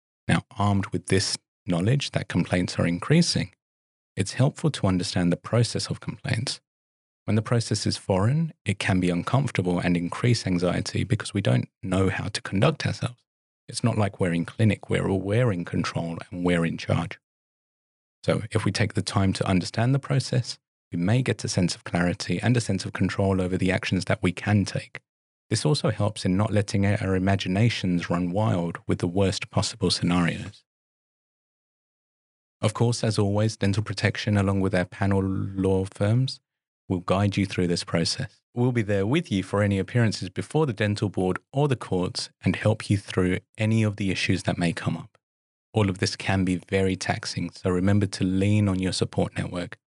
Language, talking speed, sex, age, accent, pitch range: English, 190 wpm, male, 30-49, British, 90-115 Hz